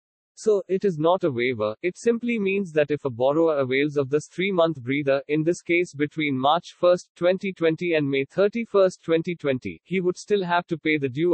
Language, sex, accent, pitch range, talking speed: English, male, Indian, 145-175 Hz, 195 wpm